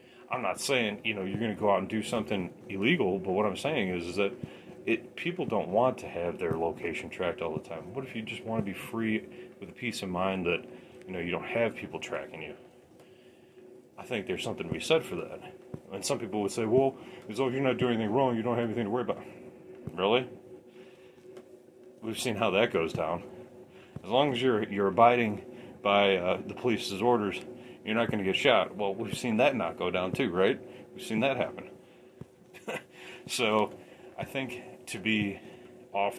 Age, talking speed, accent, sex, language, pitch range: 30-49, 210 wpm, American, male, English, 100-125 Hz